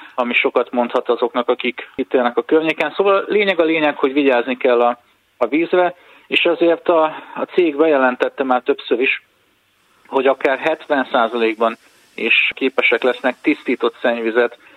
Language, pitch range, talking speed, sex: Hungarian, 115-140 Hz, 145 wpm, male